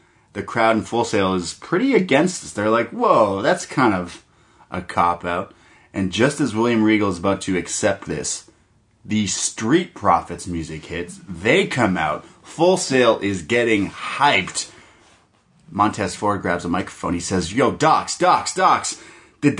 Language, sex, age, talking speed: English, male, 30-49, 160 wpm